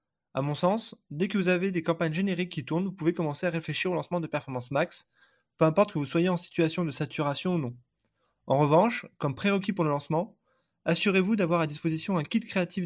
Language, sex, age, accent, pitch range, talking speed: French, male, 20-39, French, 145-180 Hz, 220 wpm